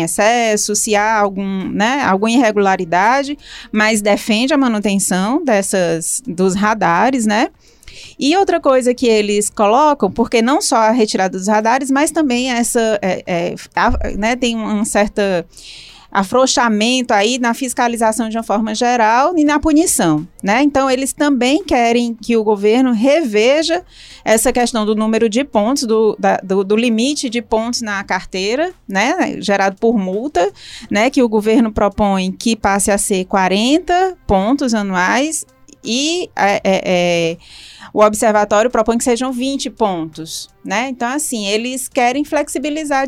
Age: 20-39